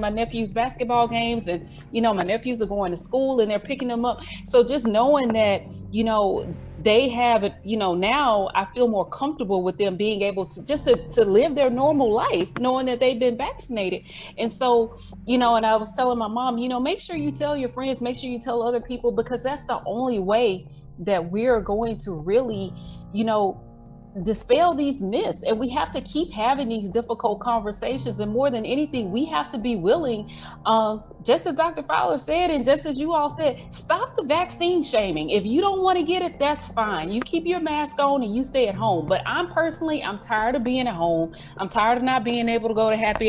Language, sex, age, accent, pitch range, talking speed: English, female, 30-49, American, 215-285 Hz, 225 wpm